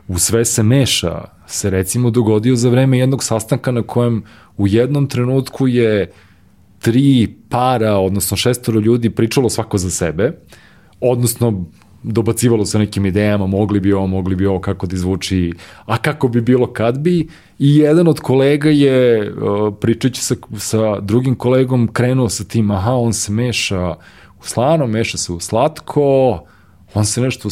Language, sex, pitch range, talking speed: English, male, 95-125 Hz, 155 wpm